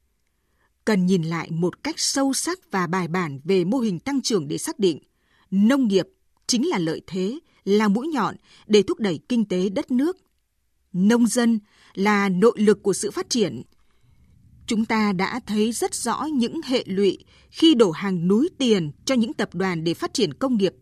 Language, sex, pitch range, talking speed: Vietnamese, female, 185-250 Hz, 190 wpm